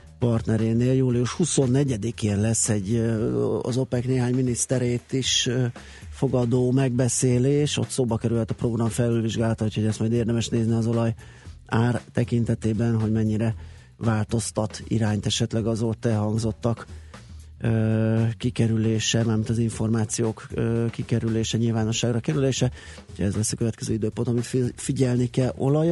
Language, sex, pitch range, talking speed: Hungarian, male, 110-125 Hz, 120 wpm